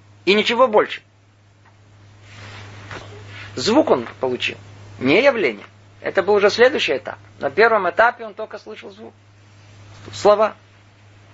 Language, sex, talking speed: Russian, male, 110 wpm